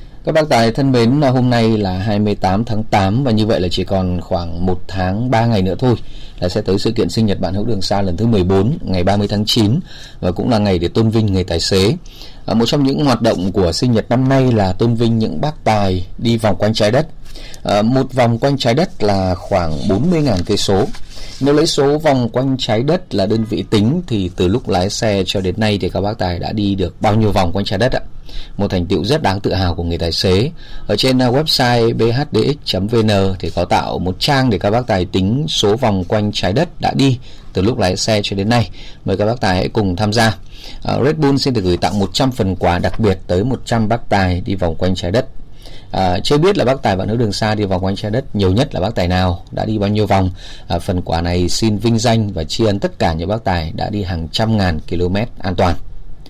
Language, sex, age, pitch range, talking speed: Vietnamese, male, 20-39, 95-120 Hz, 250 wpm